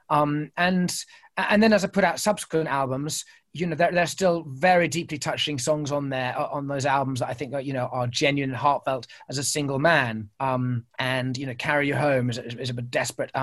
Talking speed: 225 wpm